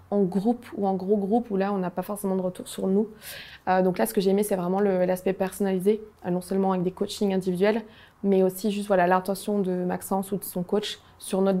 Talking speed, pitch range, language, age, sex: 245 wpm, 185-215 Hz, French, 20-39, female